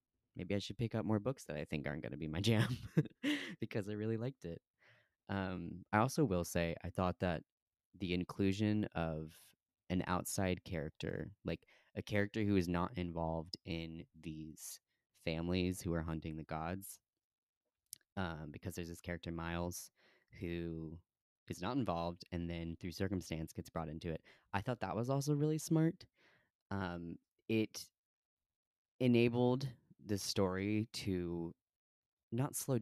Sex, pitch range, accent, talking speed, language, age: male, 85-105 Hz, American, 150 wpm, English, 20-39